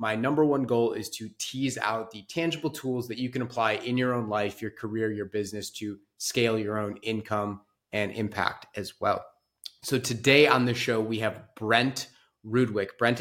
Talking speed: 190 wpm